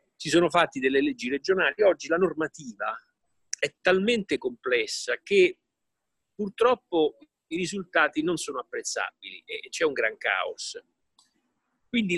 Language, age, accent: Italian, 50-69, native